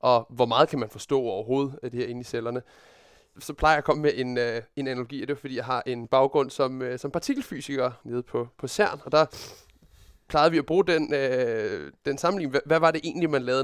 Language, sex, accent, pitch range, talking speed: Danish, male, native, 125-160 Hz, 230 wpm